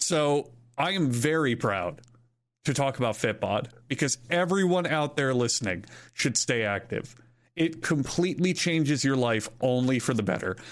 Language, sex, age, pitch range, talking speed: English, male, 30-49, 120-145 Hz, 145 wpm